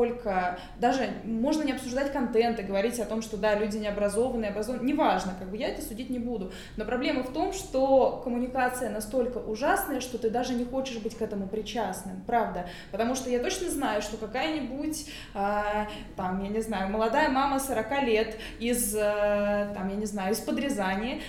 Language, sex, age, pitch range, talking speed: Russian, female, 20-39, 210-255 Hz, 180 wpm